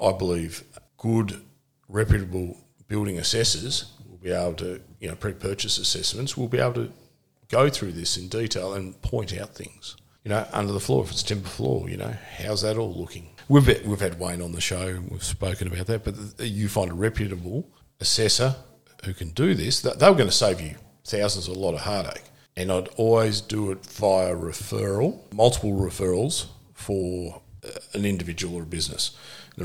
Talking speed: 185 wpm